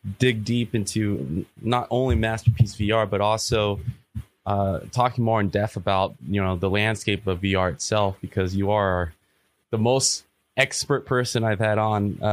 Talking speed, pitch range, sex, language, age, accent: 160 wpm, 95-110 Hz, male, English, 20-39, American